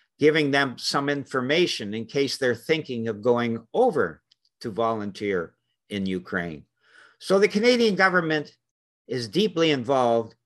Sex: male